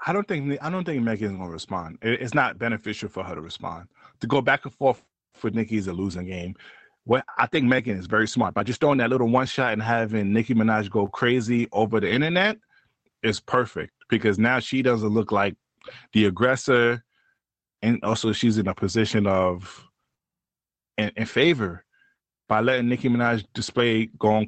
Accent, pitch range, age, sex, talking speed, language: American, 105-140 Hz, 20-39, male, 190 wpm, English